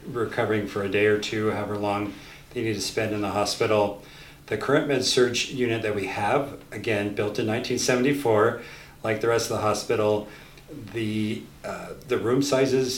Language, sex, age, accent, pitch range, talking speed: English, male, 40-59, American, 105-125 Hz, 175 wpm